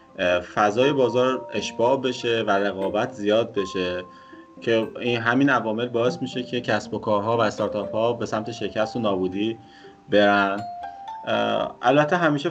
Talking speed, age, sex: 135 wpm, 20-39, male